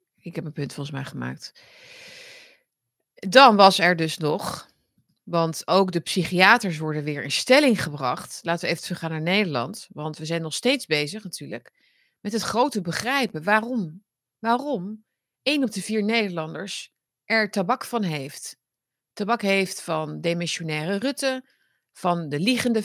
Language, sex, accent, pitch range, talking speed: Dutch, female, Dutch, 155-220 Hz, 150 wpm